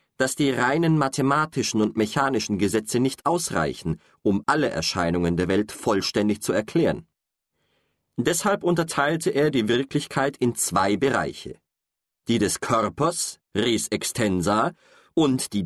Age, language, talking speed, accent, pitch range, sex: 40-59, German, 125 wpm, German, 105-155 Hz, male